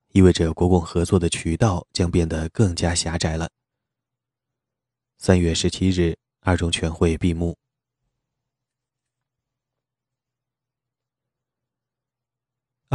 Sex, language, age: male, Chinese, 30-49